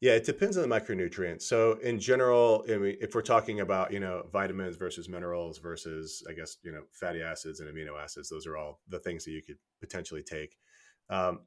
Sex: male